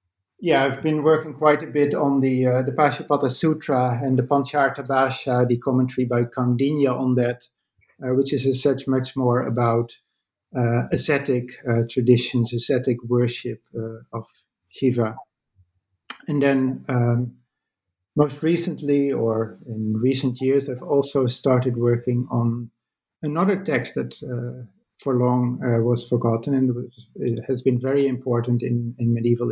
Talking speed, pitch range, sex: 145 wpm, 120-140 Hz, male